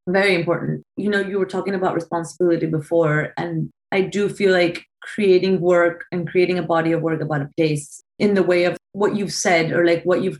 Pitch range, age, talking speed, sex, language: 170-195 Hz, 30-49, 215 wpm, female, English